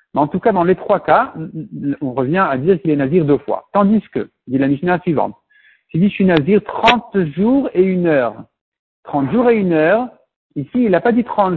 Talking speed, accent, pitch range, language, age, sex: 240 wpm, French, 140-205 Hz, French, 60-79, male